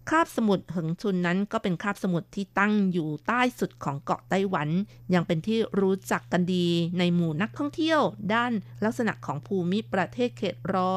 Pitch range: 170-205 Hz